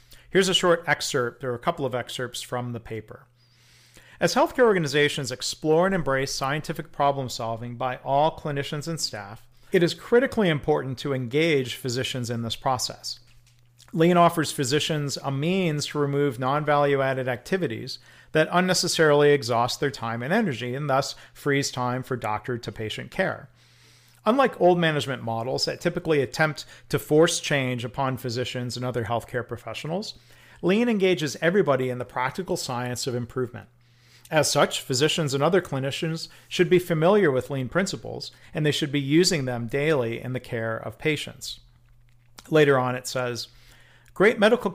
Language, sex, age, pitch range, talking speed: English, male, 40-59, 120-160 Hz, 155 wpm